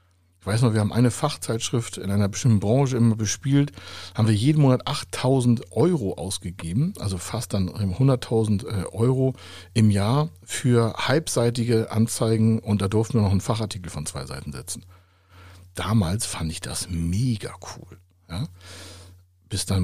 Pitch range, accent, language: 90-125 Hz, German, German